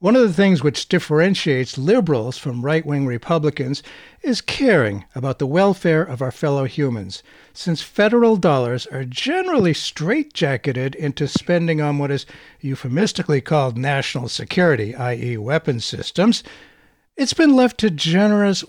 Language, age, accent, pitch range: English, 60-79, American, 135-195 Hz